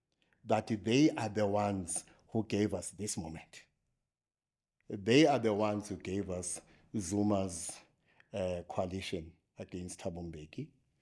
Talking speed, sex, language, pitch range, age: 120 wpm, male, English, 95-120 Hz, 60-79